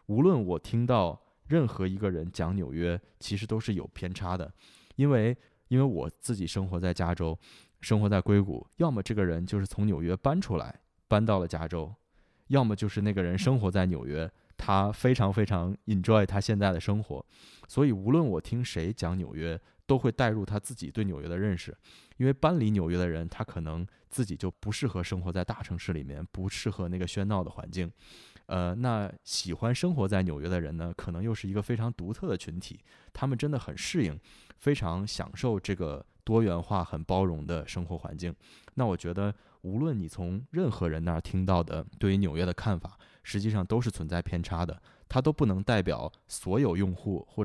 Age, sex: 20-39, male